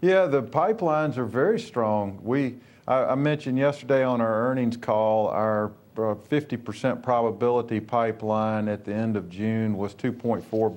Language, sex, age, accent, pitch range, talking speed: English, male, 40-59, American, 100-115 Hz, 145 wpm